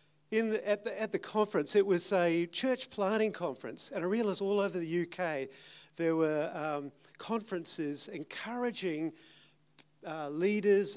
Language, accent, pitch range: English, Australian, 155-190 Hz